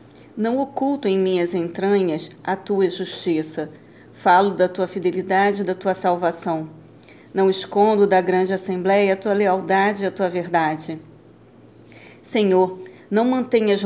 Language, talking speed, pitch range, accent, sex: Portuguese, 135 wpm, 180-200 Hz, Brazilian, female